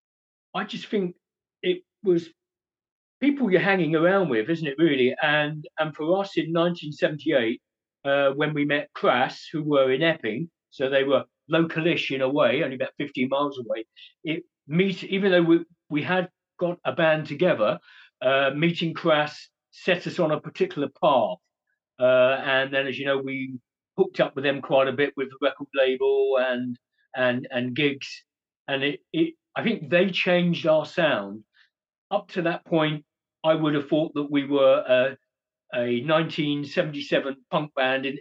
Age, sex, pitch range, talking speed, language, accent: 50-69, male, 135-175 Hz, 170 wpm, English, British